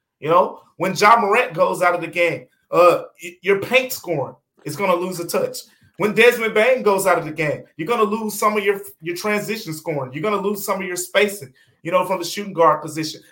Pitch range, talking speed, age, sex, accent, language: 160-215 Hz, 245 wpm, 20-39, male, American, English